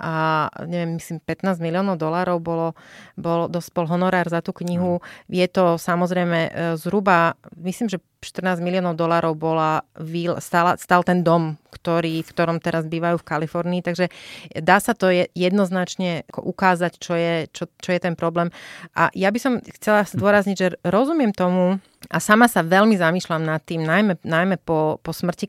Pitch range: 165-185 Hz